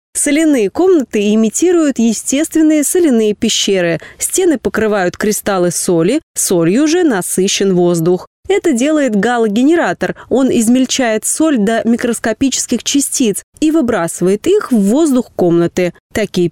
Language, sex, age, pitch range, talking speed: Russian, female, 20-39, 190-255 Hz, 110 wpm